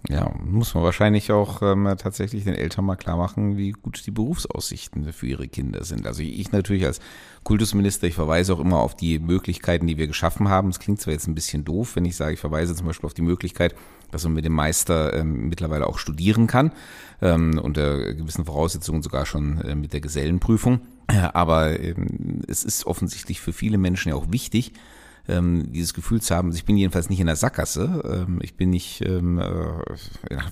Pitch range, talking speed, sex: 80-105 Hz, 195 wpm, male